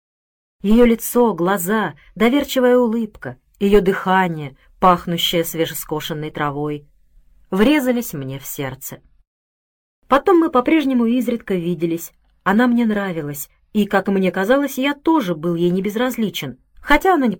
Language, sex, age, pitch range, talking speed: Russian, female, 30-49, 160-245 Hz, 115 wpm